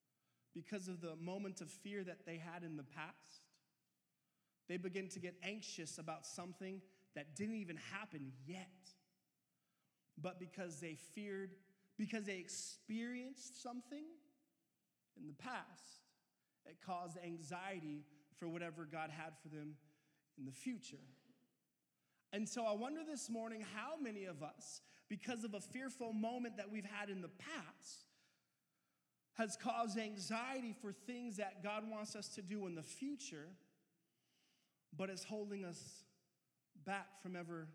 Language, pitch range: English, 170-225 Hz